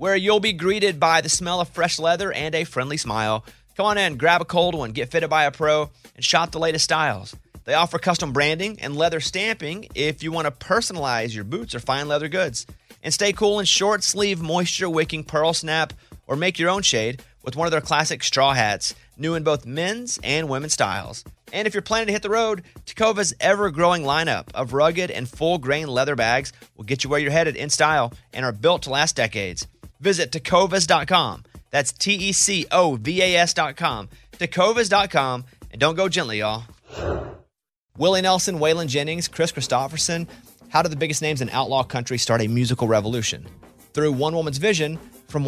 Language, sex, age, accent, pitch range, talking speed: English, male, 30-49, American, 135-180 Hz, 185 wpm